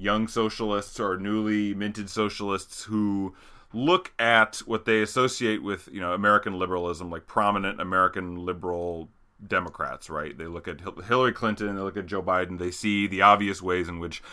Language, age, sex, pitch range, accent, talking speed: English, 30-49, male, 95-115 Hz, American, 170 wpm